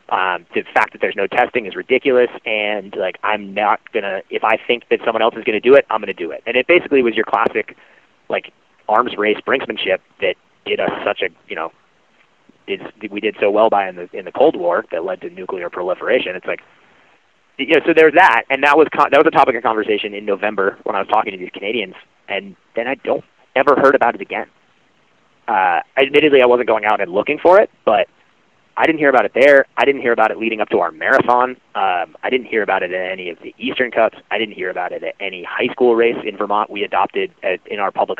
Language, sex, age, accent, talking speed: English, male, 30-49, American, 245 wpm